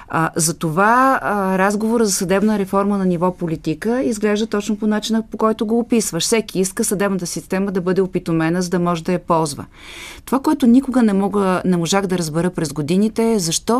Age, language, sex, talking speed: 30-49, Bulgarian, female, 190 wpm